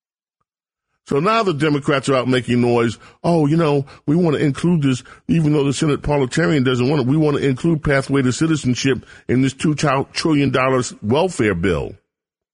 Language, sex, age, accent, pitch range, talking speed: English, male, 40-59, American, 115-150 Hz, 175 wpm